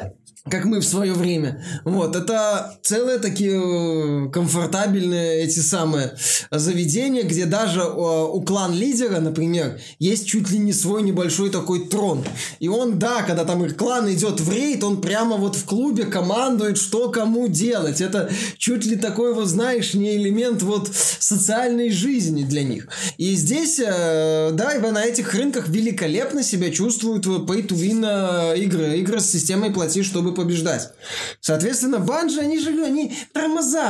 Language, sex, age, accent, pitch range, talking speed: Russian, male, 20-39, native, 170-230 Hz, 145 wpm